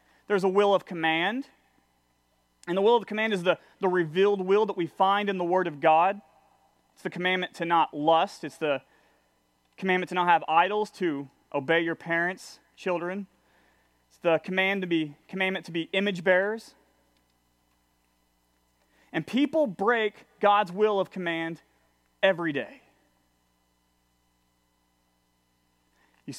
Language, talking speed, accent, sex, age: English, 140 wpm, American, male, 30-49